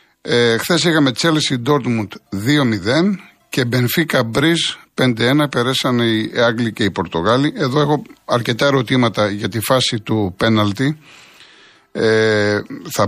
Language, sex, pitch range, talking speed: Greek, male, 115-145 Hz, 115 wpm